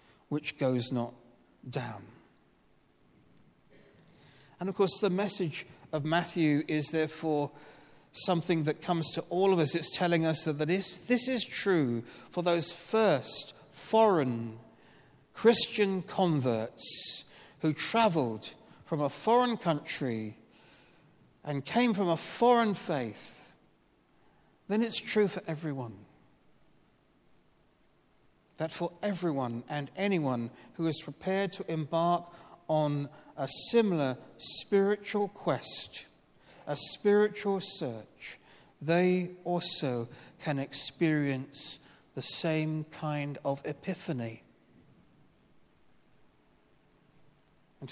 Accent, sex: British, male